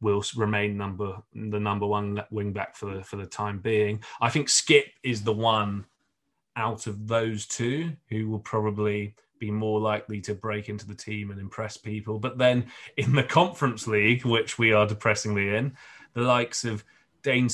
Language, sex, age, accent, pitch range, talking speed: English, male, 30-49, British, 105-120 Hz, 180 wpm